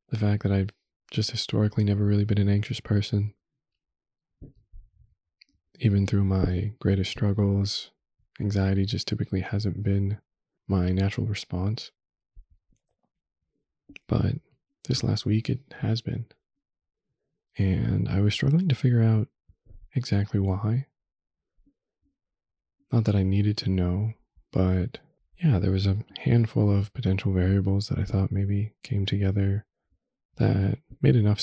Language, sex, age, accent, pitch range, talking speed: English, male, 20-39, American, 95-115 Hz, 125 wpm